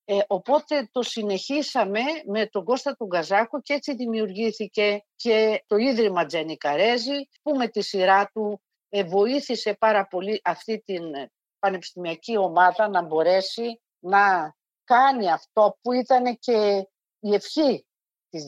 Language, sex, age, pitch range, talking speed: Greek, female, 50-69, 180-245 Hz, 125 wpm